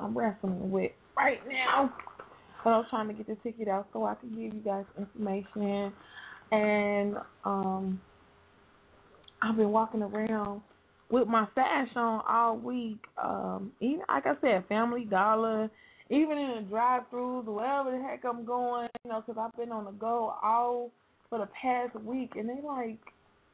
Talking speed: 165 wpm